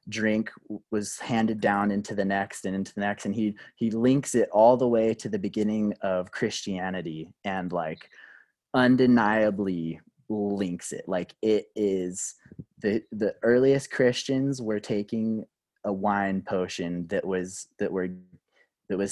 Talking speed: 150 wpm